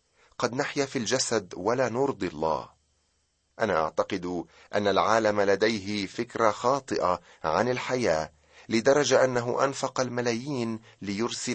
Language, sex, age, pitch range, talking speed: Arabic, male, 30-49, 90-120 Hz, 110 wpm